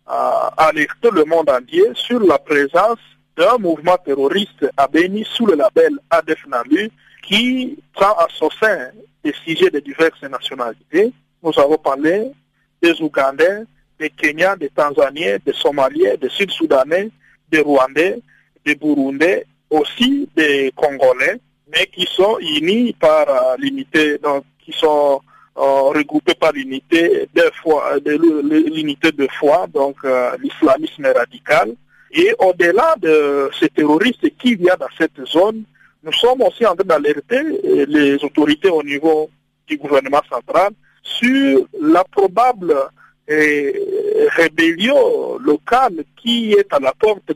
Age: 50-69